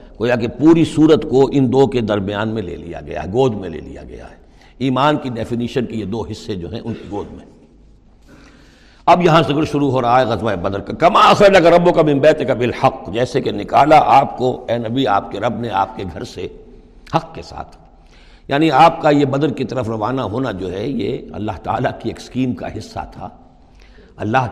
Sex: male